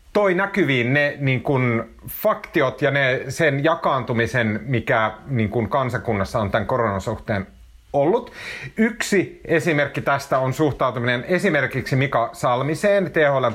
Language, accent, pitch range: Finnish, native, 110-145 Hz